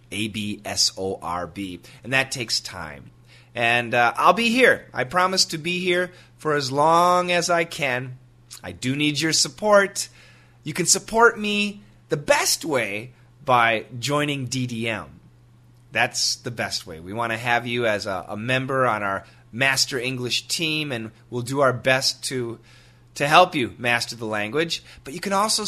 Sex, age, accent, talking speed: male, 30-49, American, 165 wpm